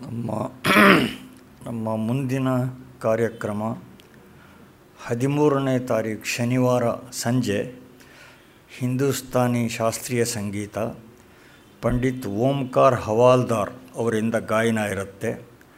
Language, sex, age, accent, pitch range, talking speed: Kannada, male, 60-79, native, 115-125 Hz, 65 wpm